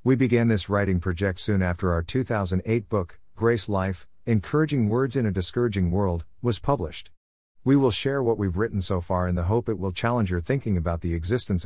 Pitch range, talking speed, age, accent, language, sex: 85-115 Hz, 200 wpm, 50-69, American, English, male